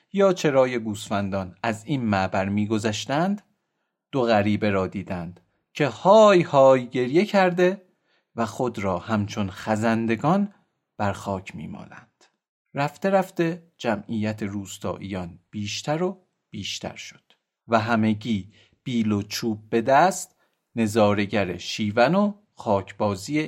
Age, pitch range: 40-59, 105-165 Hz